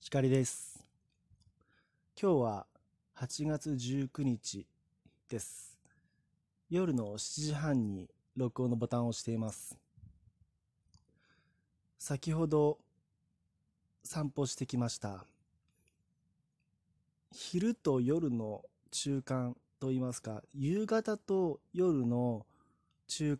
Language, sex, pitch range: Japanese, male, 115-150 Hz